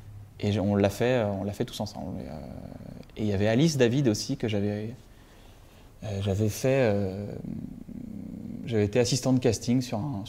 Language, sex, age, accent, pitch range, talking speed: French, male, 20-39, French, 100-125 Hz, 175 wpm